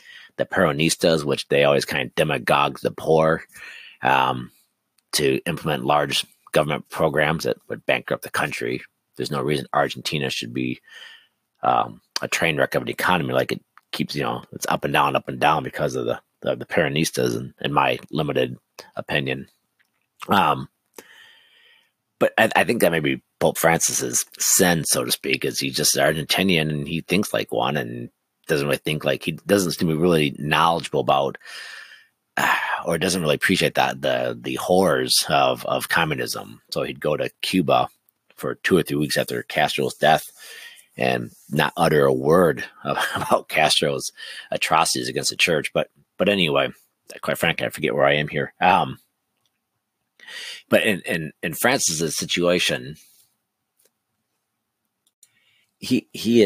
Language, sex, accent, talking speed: English, male, American, 155 wpm